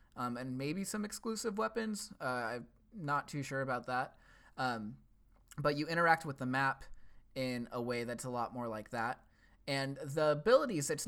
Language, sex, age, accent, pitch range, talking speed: English, male, 20-39, American, 120-155 Hz, 180 wpm